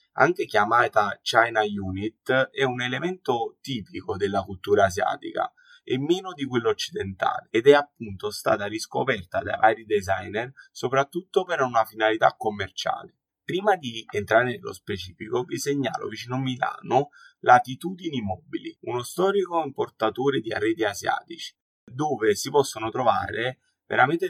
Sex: male